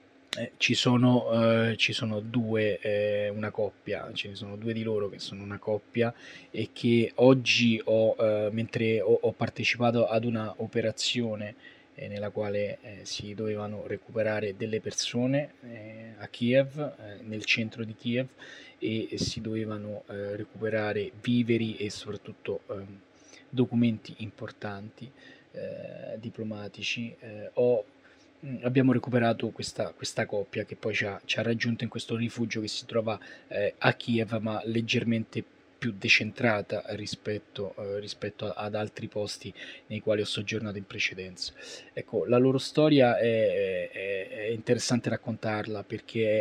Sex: male